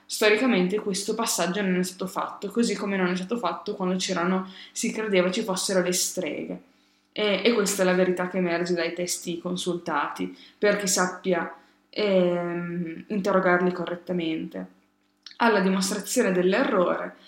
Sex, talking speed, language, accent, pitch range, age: female, 140 wpm, Italian, native, 180-215 Hz, 20-39